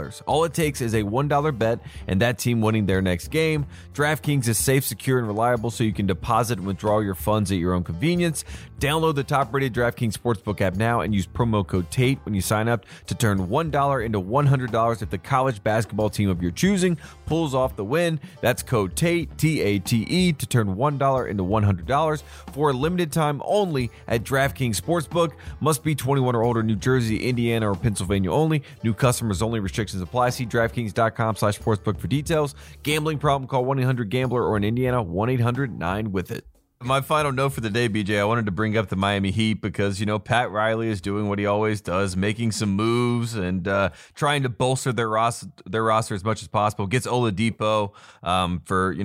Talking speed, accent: 200 wpm, American